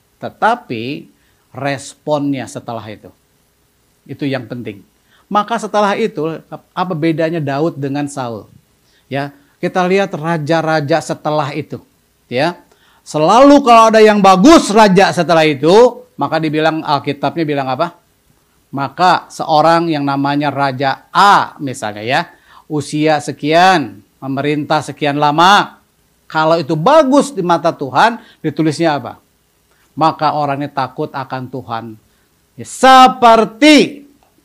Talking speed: 110 wpm